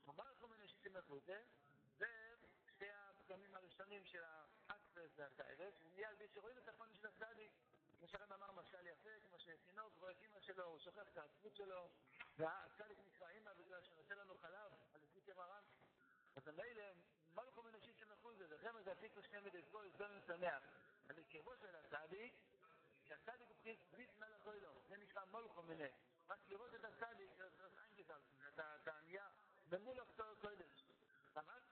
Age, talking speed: 60-79, 145 wpm